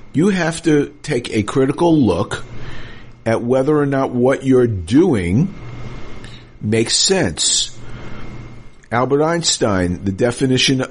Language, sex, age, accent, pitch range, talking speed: English, male, 50-69, American, 115-135 Hz, 110 wpm